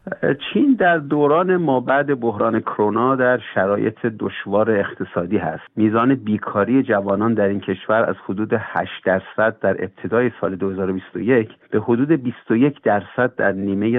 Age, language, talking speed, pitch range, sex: 50-69, Persian, 135 wpm, 100-130 Hz, male